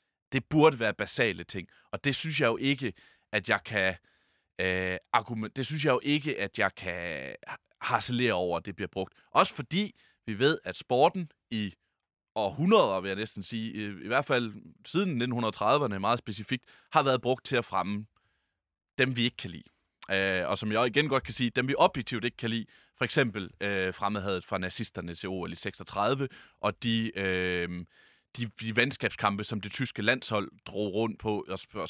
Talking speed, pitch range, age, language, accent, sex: 190 wpm, 100-125 Hz, 30-49, Danish, native, male